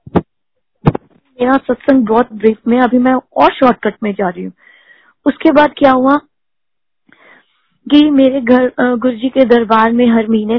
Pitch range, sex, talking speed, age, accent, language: 235-270 Hz, female, 145 wpm, 20-39, native, Hindi